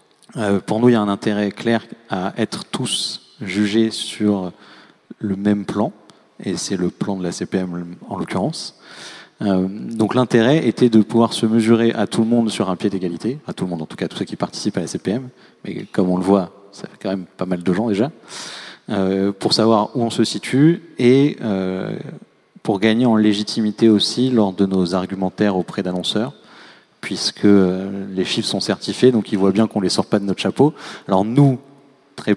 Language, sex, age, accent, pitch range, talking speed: French, male, 40-59, French, 95-115 Hz, 200 wpm